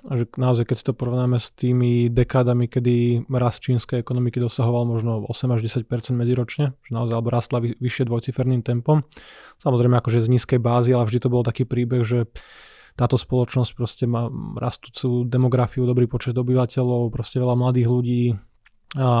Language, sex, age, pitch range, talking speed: Slovak, male, 20-39, 120-130 Hz, 160 wpm